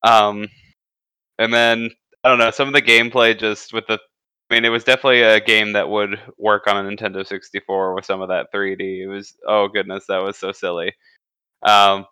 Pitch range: 100-115 Hz